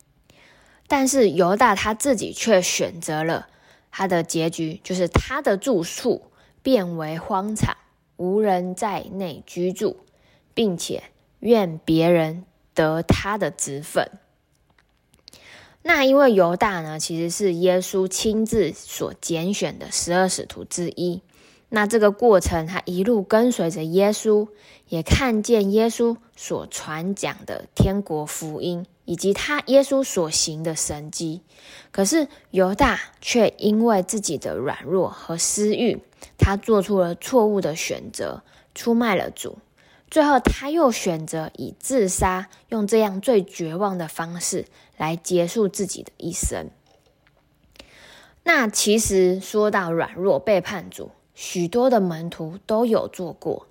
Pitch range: 170-220 Hz